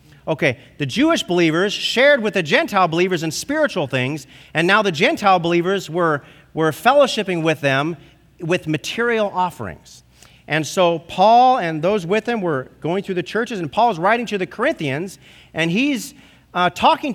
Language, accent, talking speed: English, American, 165 wpm